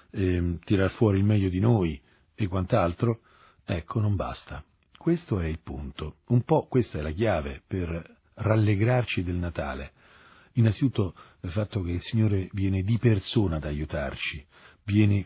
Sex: male